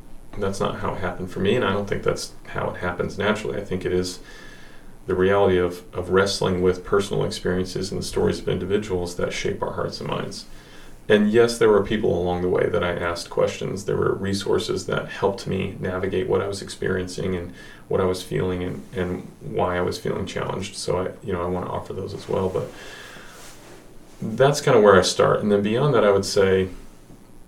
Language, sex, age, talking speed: English, male, 30-49, 215 wpm